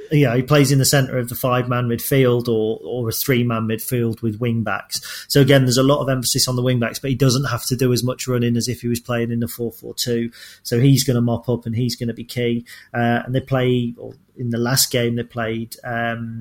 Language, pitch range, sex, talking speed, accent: English, 115-130 Hz, male, 265 wpm, British